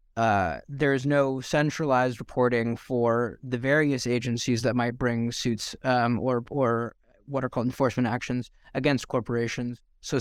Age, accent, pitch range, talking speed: 20-39, American, 120-135 Hz, 145 wpm